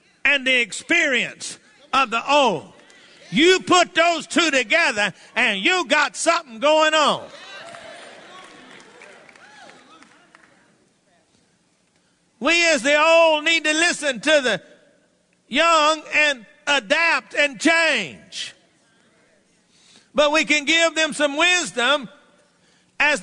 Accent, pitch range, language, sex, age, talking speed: American, 245-300 Hz, English, male, 50-69, 100 wpm